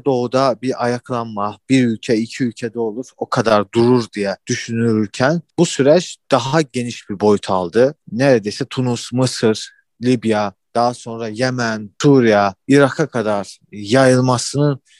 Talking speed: 125 wpm